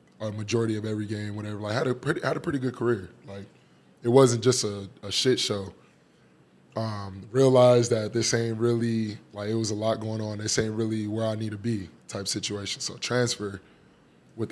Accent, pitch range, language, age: American, 105-125 Hz, English, 20-39